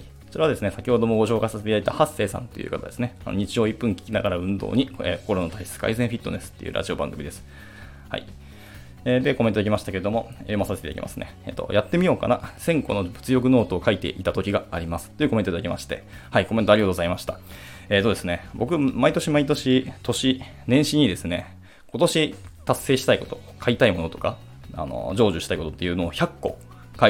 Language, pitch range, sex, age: Japanese, 90-125 Hz, male, 20-39